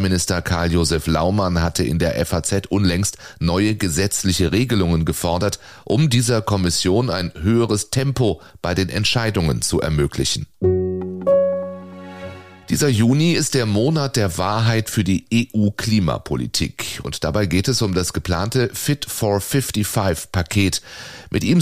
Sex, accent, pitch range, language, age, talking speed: male, German, 85-115 Hz, German, 30-49, 125 wpm